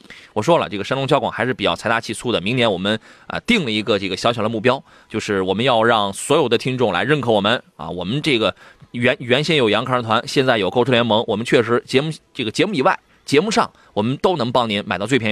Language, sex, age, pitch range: Chinese, male, 20-39, 110-155 Hz